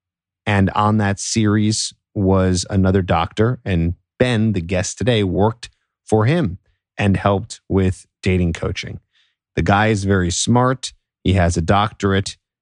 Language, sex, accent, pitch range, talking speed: English, male, American, 95-115 Hz, 140 wpm